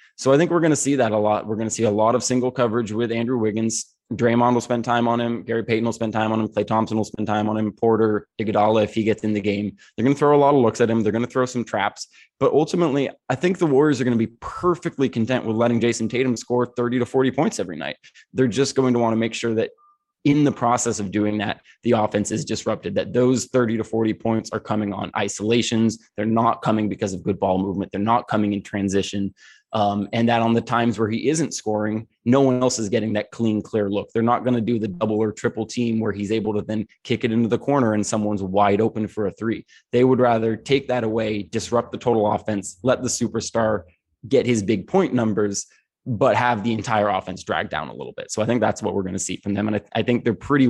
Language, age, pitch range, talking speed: English, 20-39, 105-120 Hz, 255 wpm